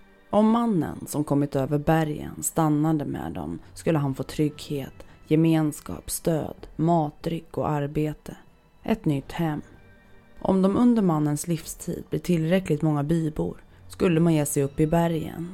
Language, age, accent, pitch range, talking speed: Swedish, 30-49, native, 145-170 Hz, 145 wpm